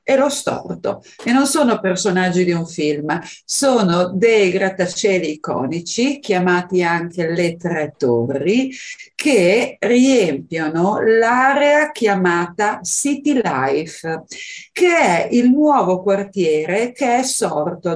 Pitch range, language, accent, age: 185-255 Hz, Italian, native, 50-69